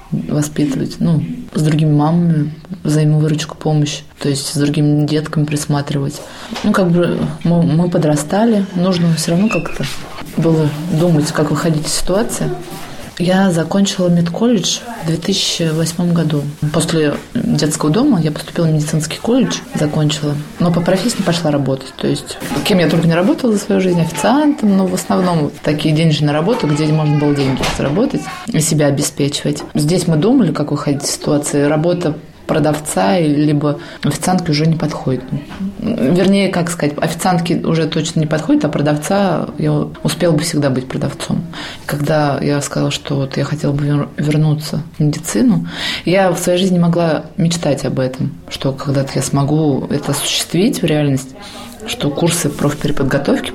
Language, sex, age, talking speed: Russian, female, 20-39, 150 wpm